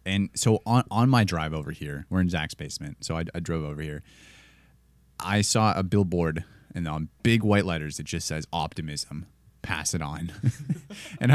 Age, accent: 20-39, American